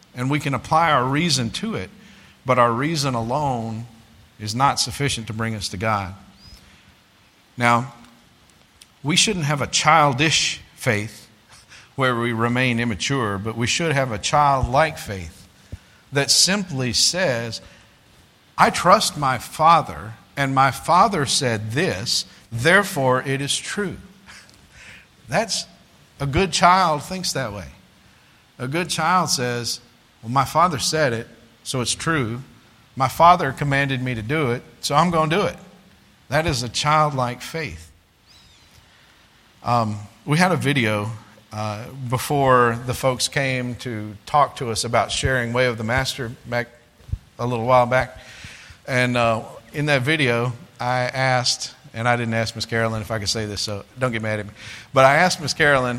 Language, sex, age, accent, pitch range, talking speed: English, male, 50-69, American, 115-140 Hz, 155 wpm